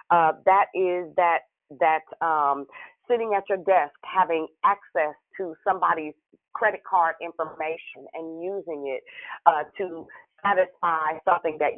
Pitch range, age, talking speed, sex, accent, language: 160-195 Hz, 40-59, 125 wpm, female, American, English